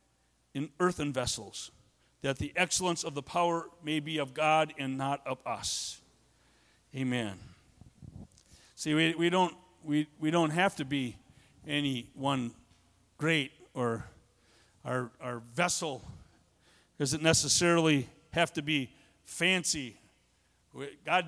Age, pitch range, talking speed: 50-69, 110-175 Hz, 120 wpm